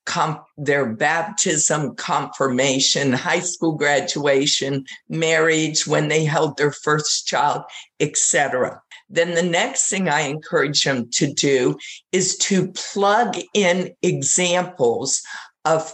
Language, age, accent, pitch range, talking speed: English, 50-69, American, 155-205 Hz, 110 wpm